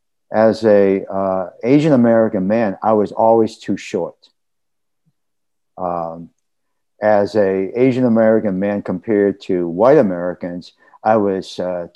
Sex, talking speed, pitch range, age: male, 110 wpm, 95-125 Hz, 50-69